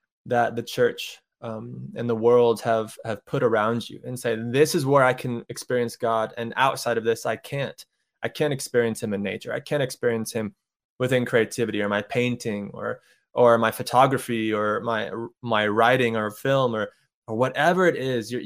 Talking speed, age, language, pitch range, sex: 190 wpm, 20-39, English, 115-135 Hz, male